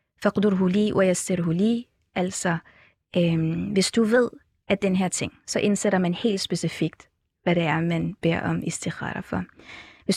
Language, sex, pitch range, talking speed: Danish, female, 180-220 Hz, 150 wpm